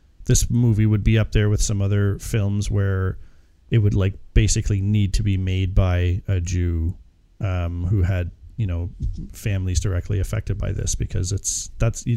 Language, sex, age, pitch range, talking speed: English, male, 40-59, 95-120 Hz, 175 wpm